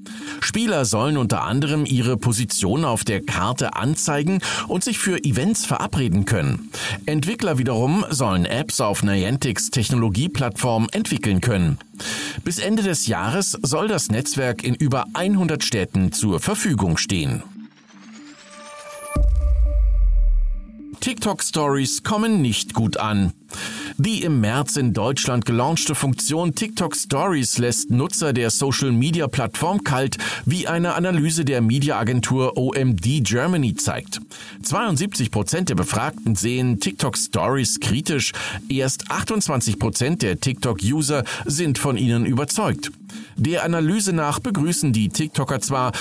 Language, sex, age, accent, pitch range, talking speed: German, male, 40-59, German, 115-165 Hz, 115 wpm